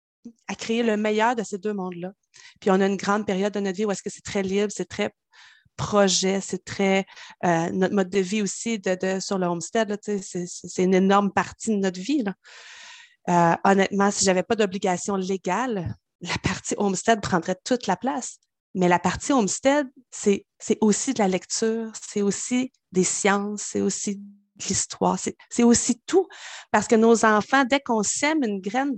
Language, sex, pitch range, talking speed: French, female, 195-245 Hz, 180 wpm